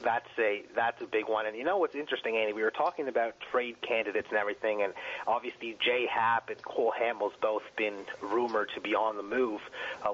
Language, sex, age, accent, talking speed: English, male, 30-49, American, 215 wpm